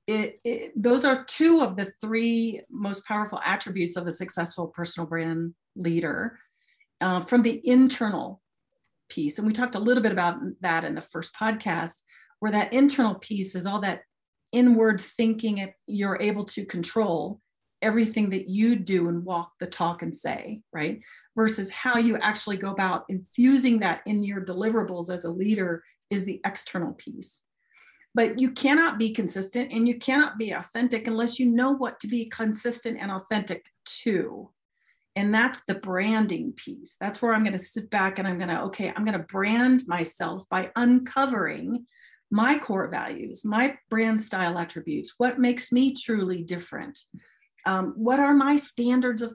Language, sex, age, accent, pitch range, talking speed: English, female, 40-59, American, 190-245 Hz, 165 wpm